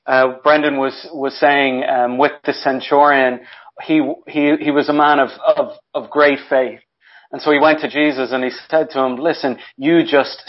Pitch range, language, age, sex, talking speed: 130-165 Hz, English, 40-59, male, 195 wpm